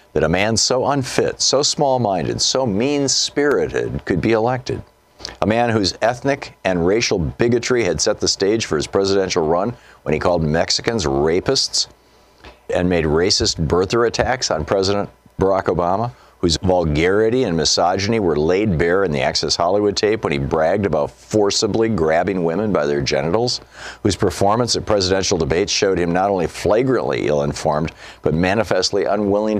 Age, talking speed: 50-69, 155 wpm